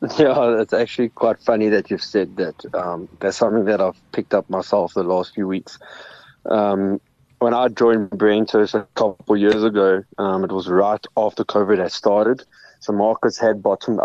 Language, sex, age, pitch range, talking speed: English, male, 20-39, 100-115 Hz, 185 wpm